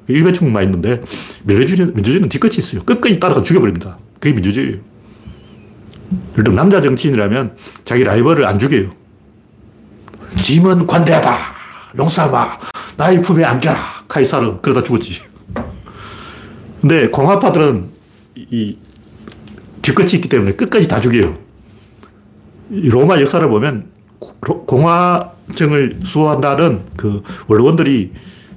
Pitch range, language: 105-165 Hz, Korean